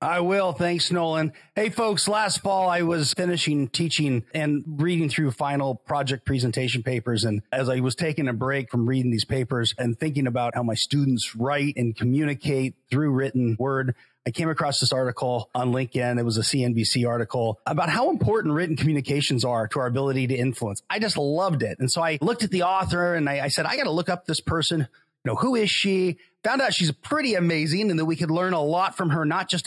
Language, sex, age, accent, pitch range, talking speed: English, male, 30-49, American, 135-175 Hz, 220 wpm